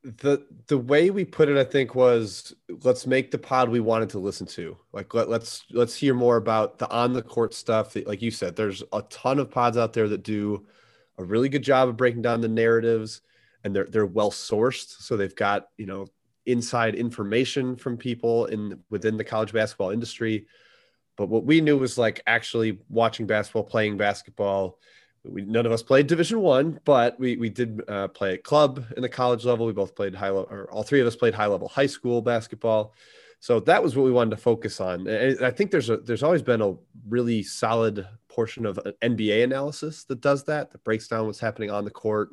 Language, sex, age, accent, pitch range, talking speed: English, male, 30-49, American, 105-125 Hz, 220 wpm